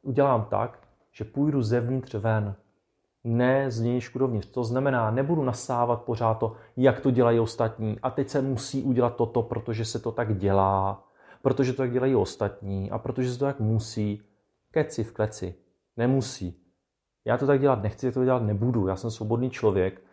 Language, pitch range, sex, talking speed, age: Czech, 105-130 Hz, male, 170 wpm, 30-49